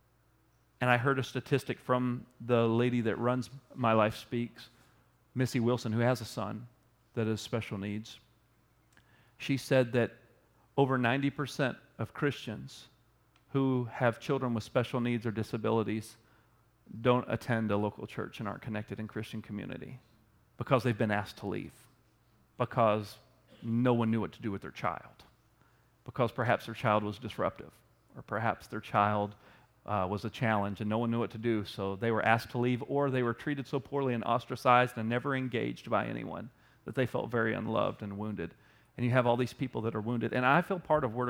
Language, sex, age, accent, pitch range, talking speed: English, male, 40-59, American, 115-135 Hz, 185 wpm